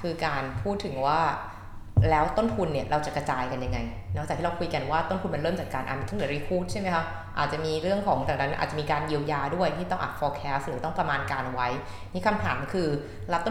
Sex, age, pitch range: female, 20-39, 130-180 Hz